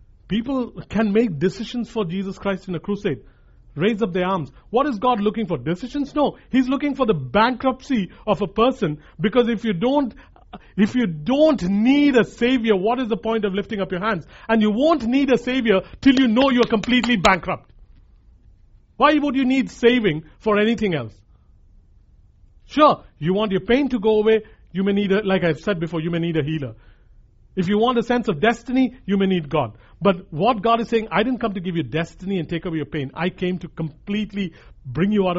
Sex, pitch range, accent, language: male, 165-230 Hz, Indian, English